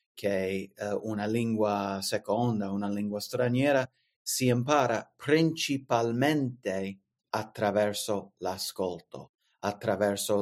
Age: 30-49